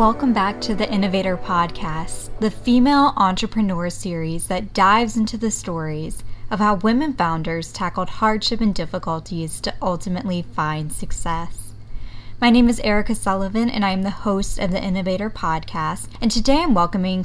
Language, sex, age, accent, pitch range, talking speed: English, female, 10-29, American, 175-220 Hz, 155 wpm